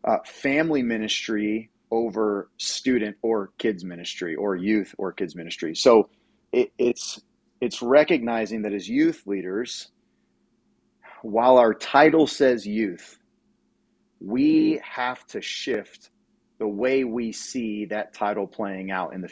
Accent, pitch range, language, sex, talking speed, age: American, 100-120 Hz, English, male, 125 wpm, 30-49